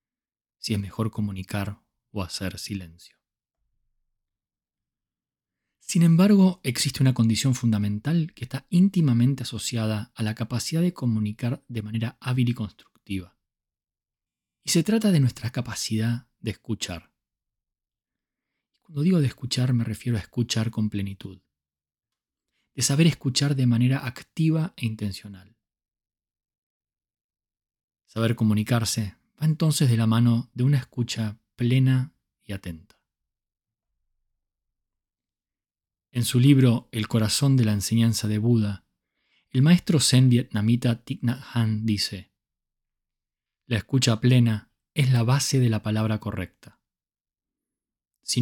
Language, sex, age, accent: Spanish, male, 20-39, Argentinian